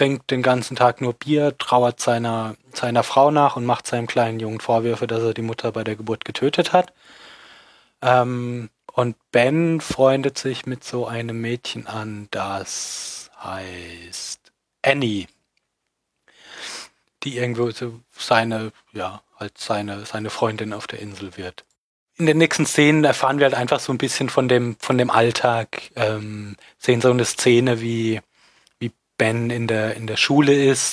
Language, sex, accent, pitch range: German, male, German, 110-125 Hz